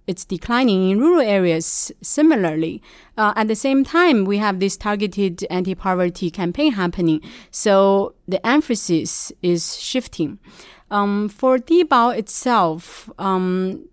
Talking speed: 120 wpm